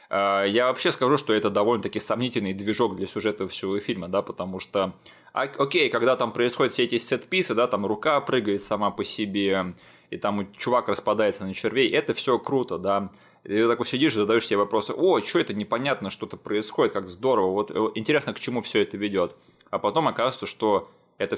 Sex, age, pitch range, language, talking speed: male, 20-39, 95-115 Hz, Russian, 190 wpm